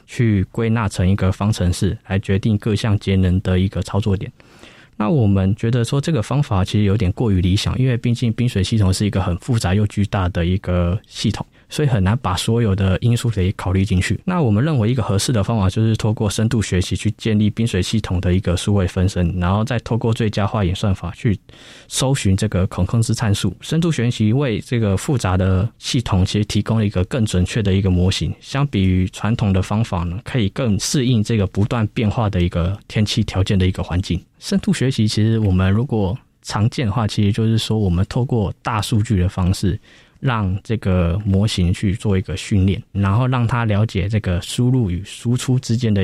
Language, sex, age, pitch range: Chinese, male, 20-39, 95-120 Hz